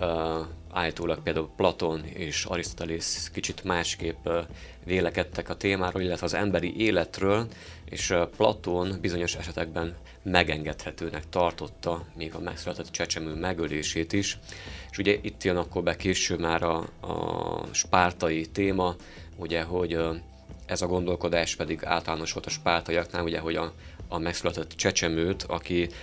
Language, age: Hungarian, 30-49